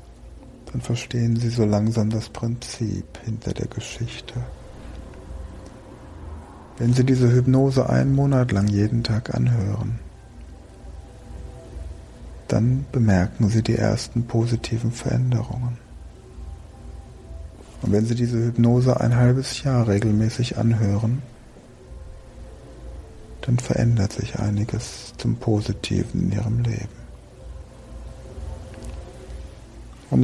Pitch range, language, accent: 100-120 Hz, German, German